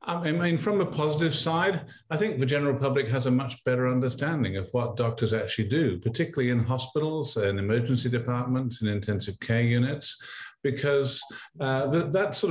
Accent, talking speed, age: British, 170 wpm, 50-69